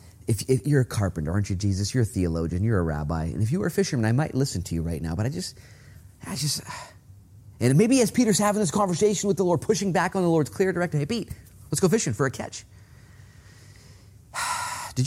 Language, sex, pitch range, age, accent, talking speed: French, male, 100-165 Hz, 30-49, American, 230 wpm